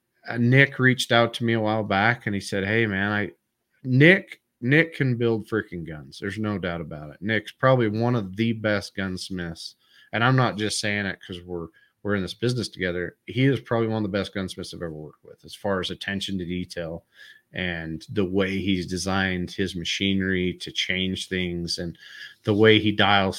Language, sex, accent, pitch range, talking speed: English, male, American, 95-115 Hz, 200 wpm